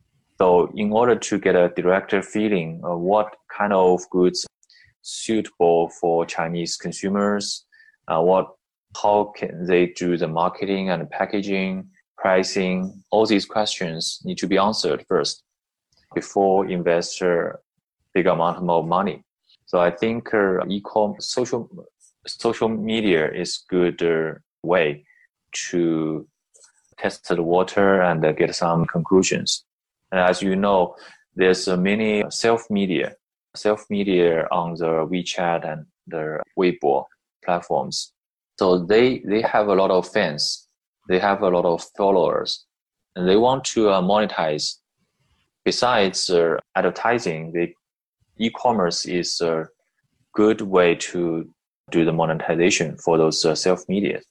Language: Chinese